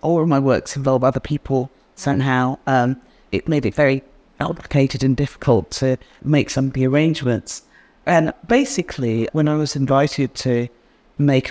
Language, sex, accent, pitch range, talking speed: English, female, British, 130-160 Hz, 155 wpm